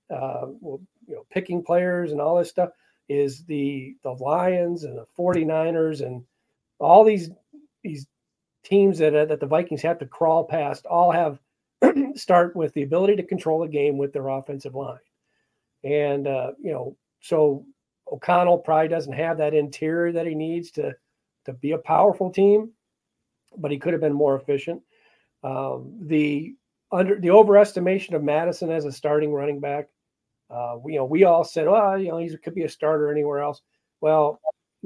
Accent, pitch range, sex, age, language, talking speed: American, 145-180 Hz, male, 50-69, English, 175 wpm